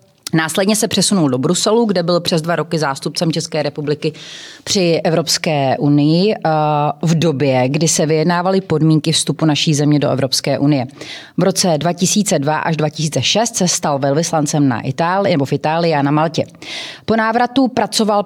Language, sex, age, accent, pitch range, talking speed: Czech, female, 30-49, native, 150-190 Hz, 155 wpm